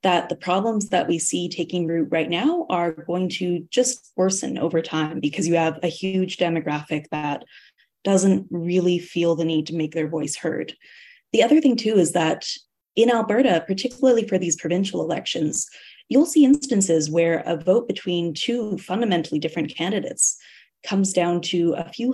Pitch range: 165-205 Hz